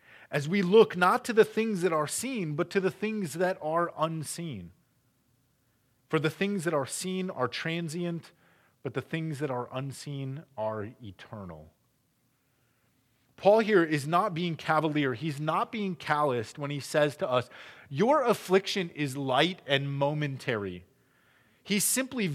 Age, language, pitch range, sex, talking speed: 30-49, English, 120-175 Hz, male, 150 wpm